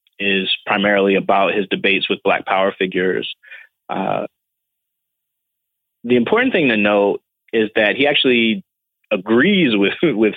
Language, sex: English, male